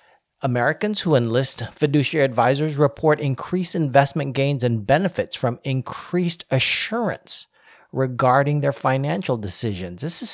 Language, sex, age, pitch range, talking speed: English, male, 40-59, 125-170 Hz, 115 wpm